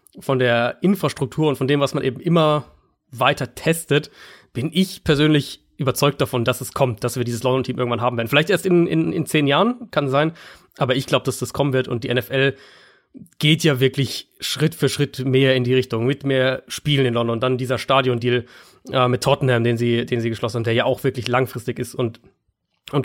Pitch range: 125-150 Hz